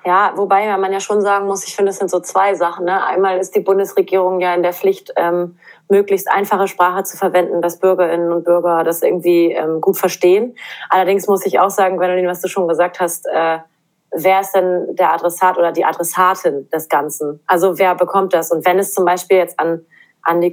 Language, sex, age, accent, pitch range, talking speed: German, female, 30-49, German, 175-195 Hz, 215 wpm